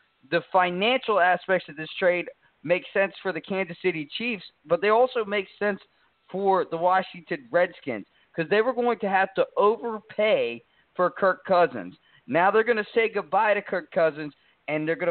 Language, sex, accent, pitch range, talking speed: English, male, American, 165-210 Hz, 180 wpm